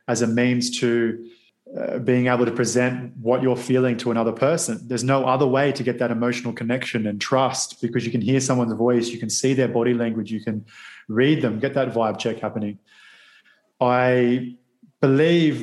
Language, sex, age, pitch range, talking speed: German, male, 20-39, 120-135 Hz, 190 wpm